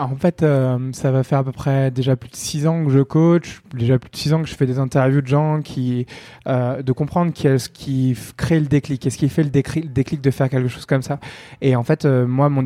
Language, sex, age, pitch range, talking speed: French, male, 20-39, 125-140 Hz, 270 wpm